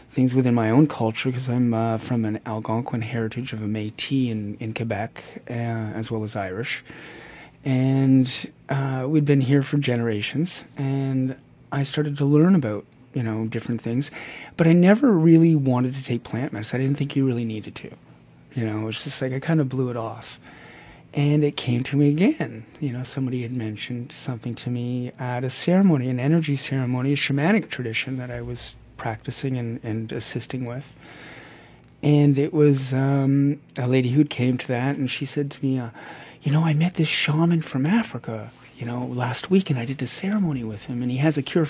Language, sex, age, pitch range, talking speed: English, male, 30-49, 120-145 Hz, 200 wpm